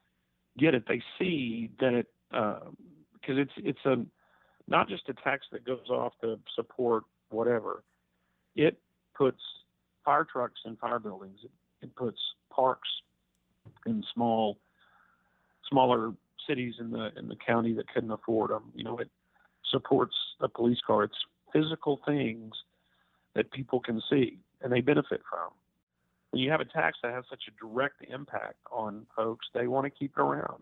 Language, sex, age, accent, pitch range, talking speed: English, male, 50-69, American, 95-130 Hz, 155 wpm